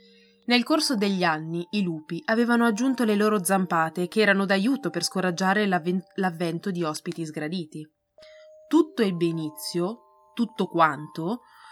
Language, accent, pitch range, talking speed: Italian, native, 170-230 Hz, 130 wpm